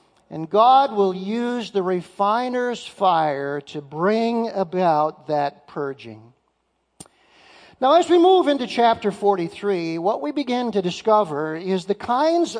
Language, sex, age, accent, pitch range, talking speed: English, male, 50-69, American, 180-245 Hz, 130 wpm